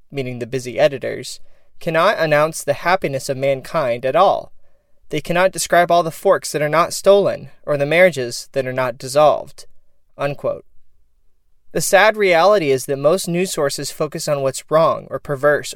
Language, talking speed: English, 165 wpm